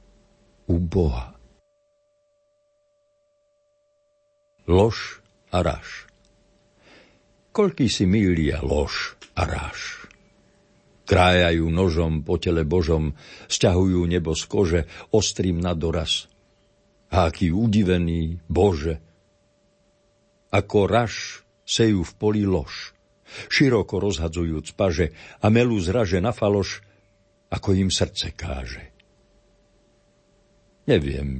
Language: Slovak